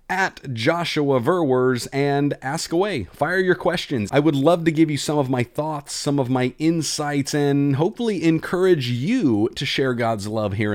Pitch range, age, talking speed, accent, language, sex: 130-170 Hz, 30-49, 180 wpm, American, English, male